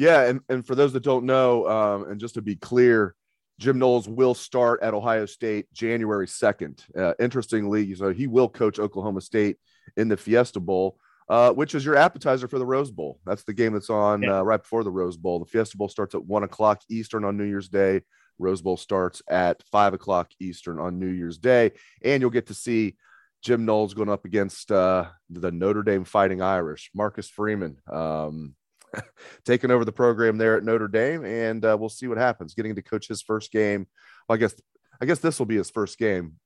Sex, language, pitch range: male, English, 100-120 Hz